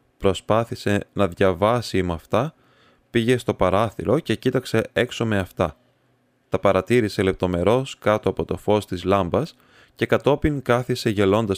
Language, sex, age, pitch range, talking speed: Greek, male, 20-39, 95-120 Hz, 135 wpm